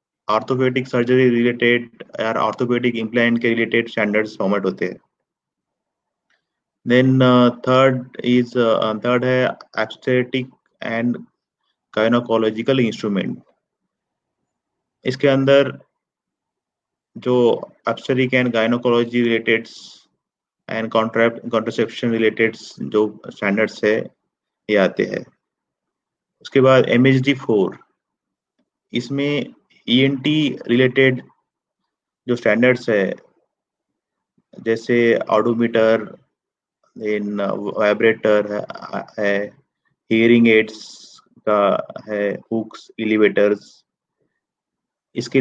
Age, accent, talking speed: 30-49, native, 40 wpm